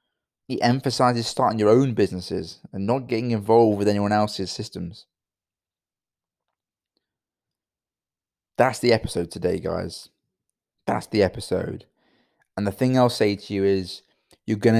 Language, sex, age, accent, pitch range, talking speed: English, male, 20-39, British, 90-105 Hz, 130 wpm